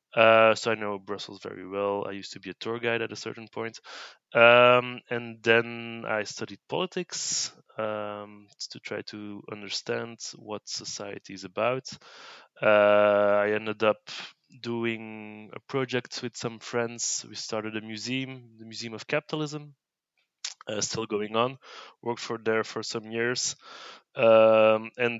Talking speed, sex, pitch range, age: 150 wpm, male, 105-125 Hz, 20-39